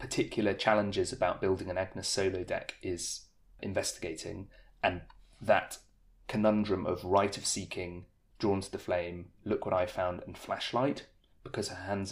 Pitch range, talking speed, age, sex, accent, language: 95-110 Hz, 150 wpm, 30-49, male, British, English